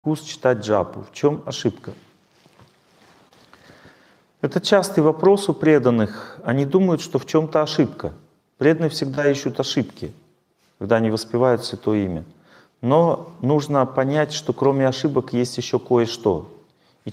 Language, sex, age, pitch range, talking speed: Russian, male, 40-59, 125-155 Hz, 125 wpm